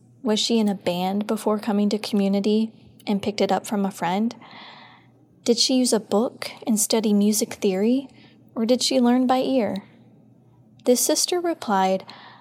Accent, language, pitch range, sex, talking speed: American, English, 200-235 Hz, female, 165 wpm